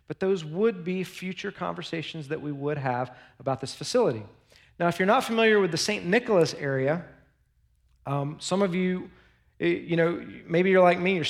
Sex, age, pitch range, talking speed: male, 40-59, 145-185 Hz, 180 wpm